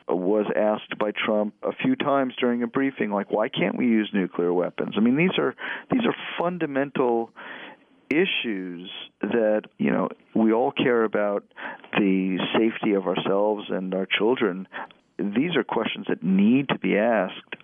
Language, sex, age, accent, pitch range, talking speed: English, male, 40-59, American, 95-120 Hz, 160 wpm